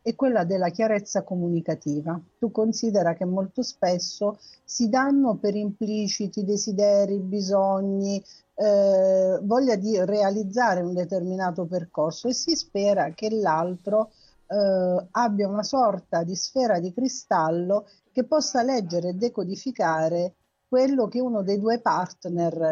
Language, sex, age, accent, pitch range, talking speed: Italian, female, 50-69, native, 185-235 Hz, 125 wpm